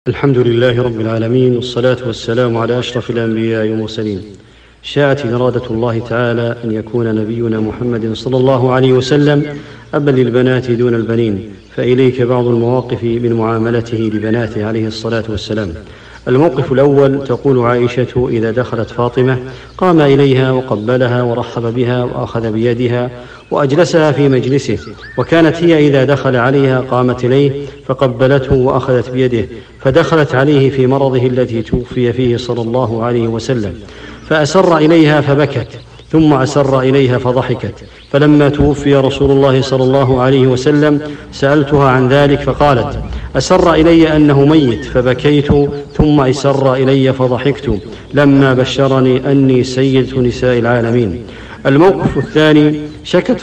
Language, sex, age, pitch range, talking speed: English, male, 50-69, 120-140 Hz, 125 wpm